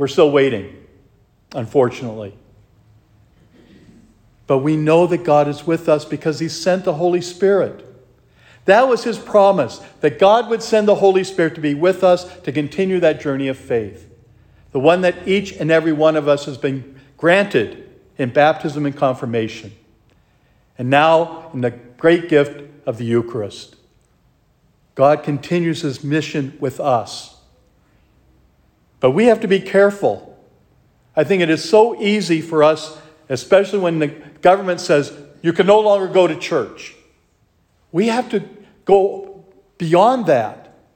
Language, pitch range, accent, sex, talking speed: English, 140-190 Hz, American, male, 150 wpm